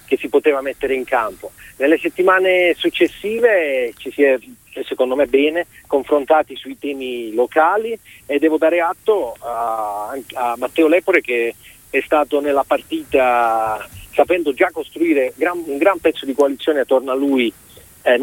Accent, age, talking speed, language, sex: native, 40-59, 145 wpm, Italian, male